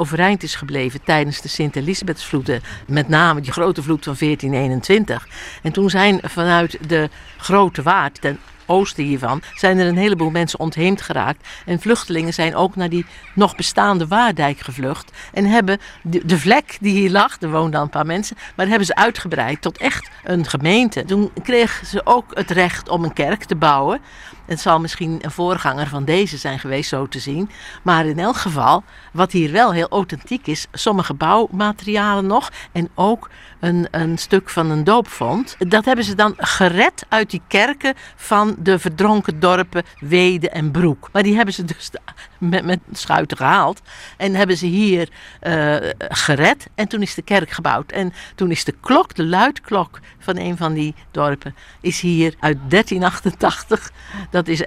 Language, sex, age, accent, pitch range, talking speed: Dutch, female, 60-79, Dutch, 155-195 Hz, 175 wpm